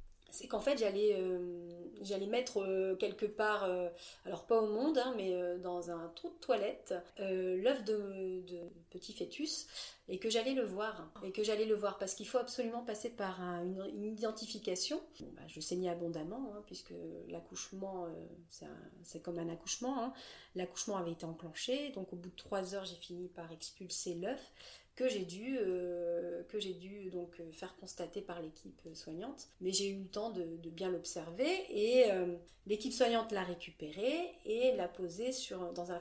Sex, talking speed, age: female, 190 wpm, 30-49